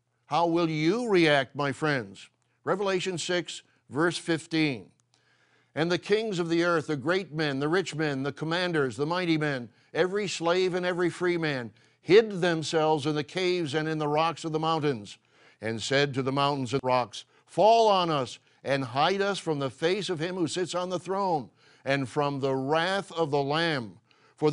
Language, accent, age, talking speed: English, American, 60-79, 190 wpm